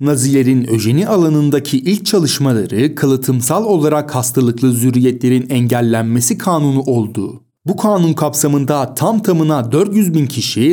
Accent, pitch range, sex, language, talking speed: native, 125-170 Hz, male, Turkish, 110 wpm